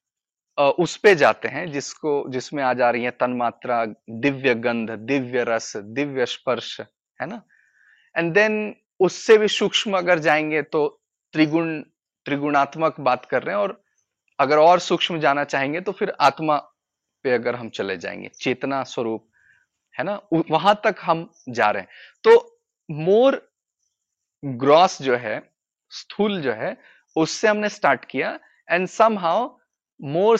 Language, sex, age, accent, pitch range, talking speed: Hindi, male, 30-49, native, 130-190 Hz, 140 wpm